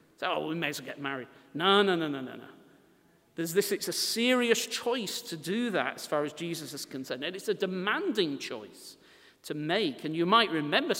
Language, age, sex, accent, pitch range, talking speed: English, 40-59, male, British, 175-240 Hz, 205 wpm